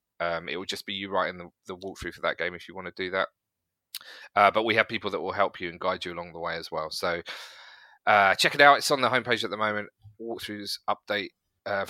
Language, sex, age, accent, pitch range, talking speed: English, male, 30-49, British, 100-125 Hz, 255 wpm